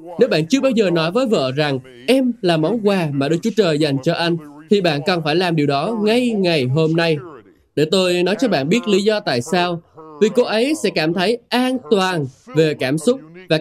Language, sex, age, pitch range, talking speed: Vietnamese, male, 20-39, 155-210 Hz, 235 wpm